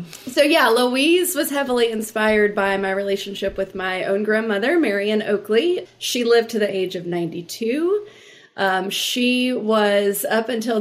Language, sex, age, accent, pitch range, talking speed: English, female, 30-49, American, 185-230 Hz, 150 wpm